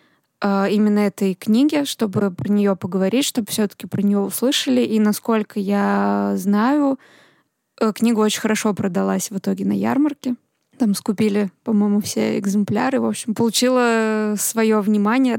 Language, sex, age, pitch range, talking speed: Russian, female, 20-39, 200-230 Hz, 135 wpm